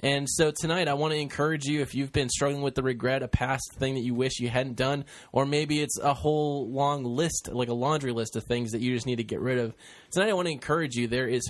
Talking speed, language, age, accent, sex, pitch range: 275 wpm, English, 10-29, American, male, 125-150 Hz